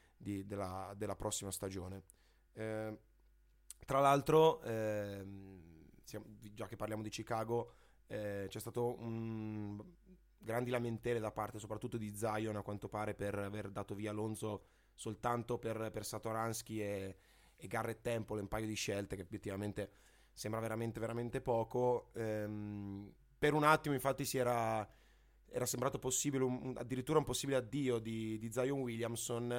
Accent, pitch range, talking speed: native, 105-120 Hz, 135 wpm